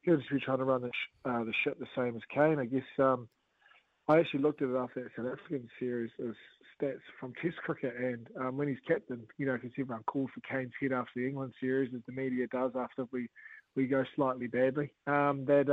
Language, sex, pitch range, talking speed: English, male, 130-145 Hz, 235 wpm